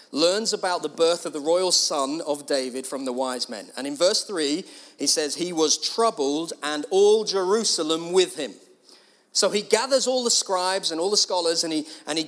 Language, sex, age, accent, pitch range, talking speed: English, male, 40-59, British, 160-235 Hz, 205 wpm